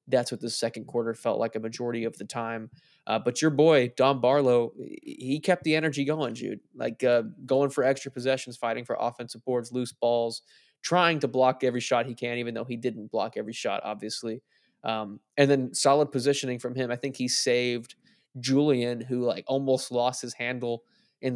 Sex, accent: male, American